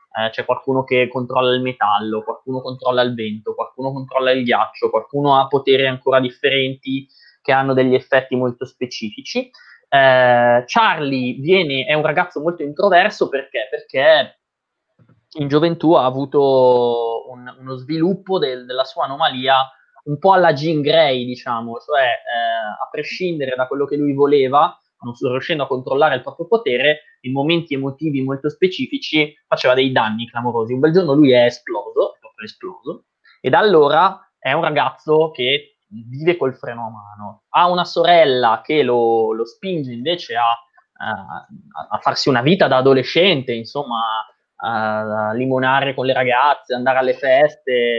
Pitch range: 125-160 Hz